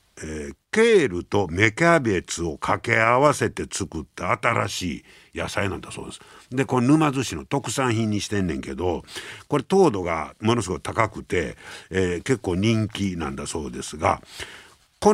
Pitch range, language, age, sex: 115-185 Hz, Japanese, 60-79, male